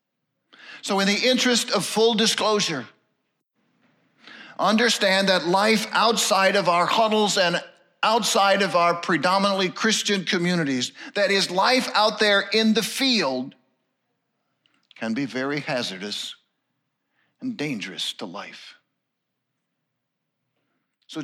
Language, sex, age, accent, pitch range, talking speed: English, male, 50-69, American, 165-220 Hz, 105 wpm